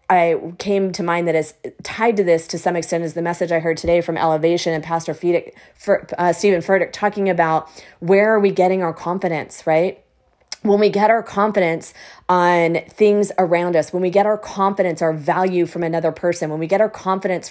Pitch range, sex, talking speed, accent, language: 170-205 Hz, female, 200 wpm, American, English